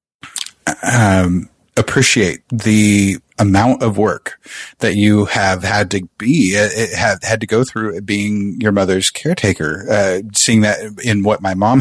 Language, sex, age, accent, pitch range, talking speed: English, male, 30-49, American, 100-115 Hz, 150 wpm